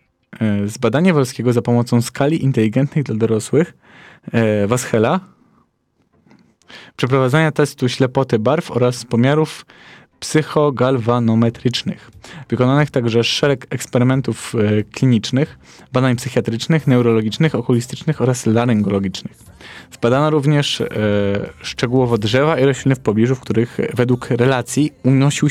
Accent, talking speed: native, 100 wpm